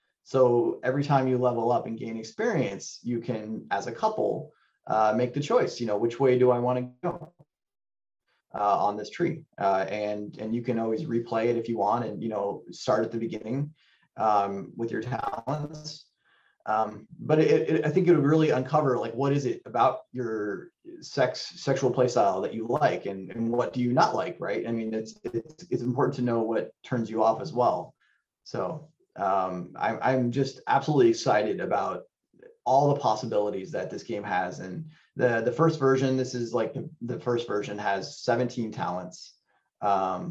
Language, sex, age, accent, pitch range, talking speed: English, male, 30-49, American, 110-140 Hz, 190 wpm